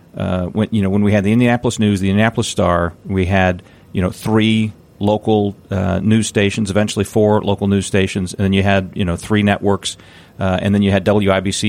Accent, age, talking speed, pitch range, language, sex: American, 40-59, 210 wpm, 95-110 Hz, English, male